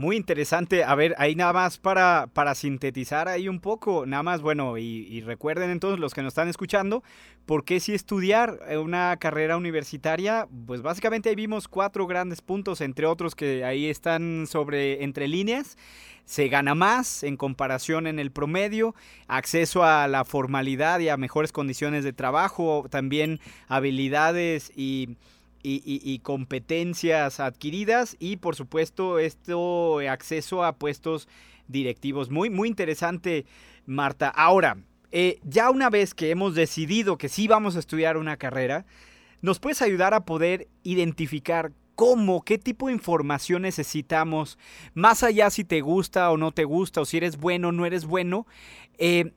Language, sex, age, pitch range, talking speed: Spanish, male, 30-49, 140-180 Hz, 160 wpm